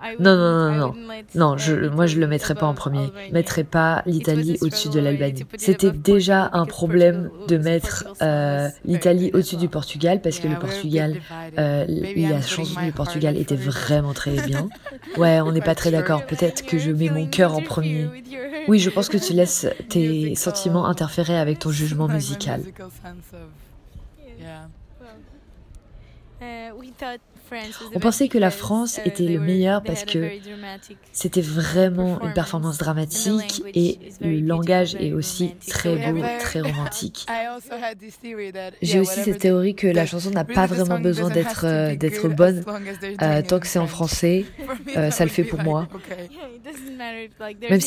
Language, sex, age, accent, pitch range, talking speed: French, female, 20-39, French, 160-195 Hz, 150 wpm